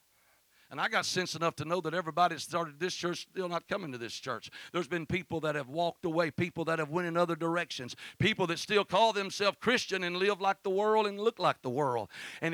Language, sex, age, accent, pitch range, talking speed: English, male, 60-79, American, 190-280 Hz, 240 wpm